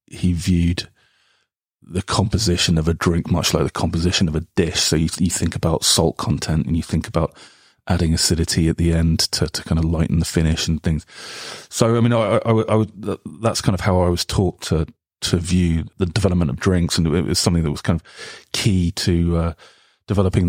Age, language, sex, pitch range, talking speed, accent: 30-49, English, male, 85-100 Hz, 210 wpm, British